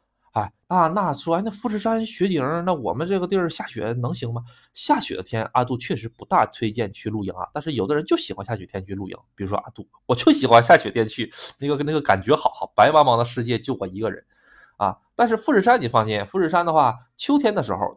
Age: 20-39